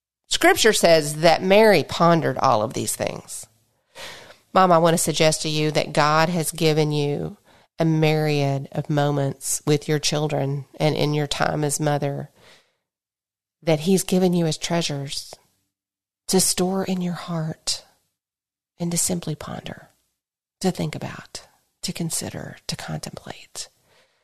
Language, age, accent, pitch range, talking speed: English, 40-59, American, 155-210 Hz, 140 wpm